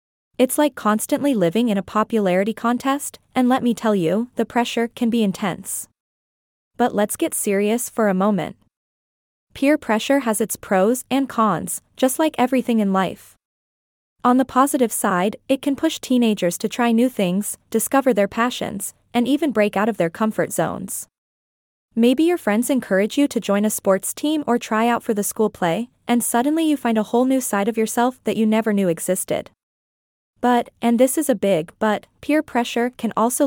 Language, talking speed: English, 185 wpm